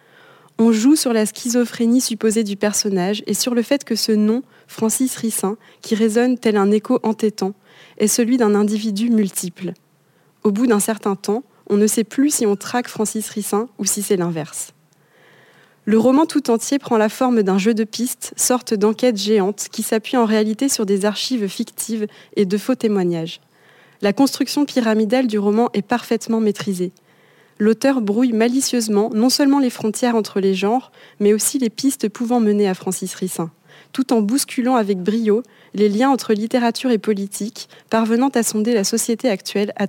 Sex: female